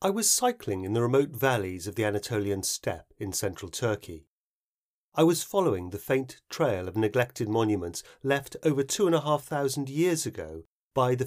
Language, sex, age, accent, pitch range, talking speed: English, male, 40-59, British, 100-155 Hz, 180 wpm